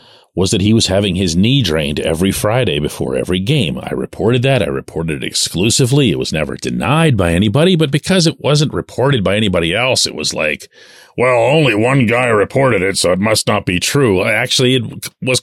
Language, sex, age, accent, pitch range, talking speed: English, male, 40-59, American, 110-150 Hz, 200 wpm